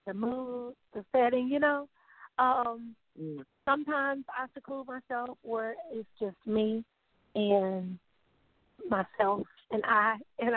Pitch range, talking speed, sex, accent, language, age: 215-255 Hz, 115 wpm, female, American, English, 40-59